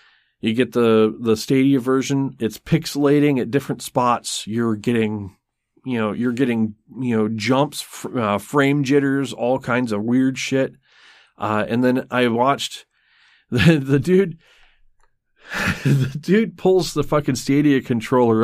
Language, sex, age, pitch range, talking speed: English, male, 40-59, 110-140 Hz, 140 wpm